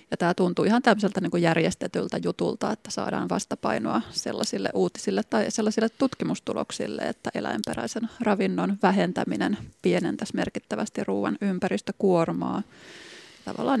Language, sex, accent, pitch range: Finnish, female, native, 175-210 Hz